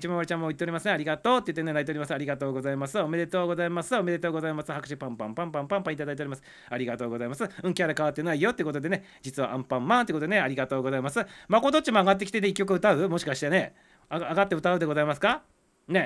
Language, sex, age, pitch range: Japanese, male, 40-59, 150-195 Hz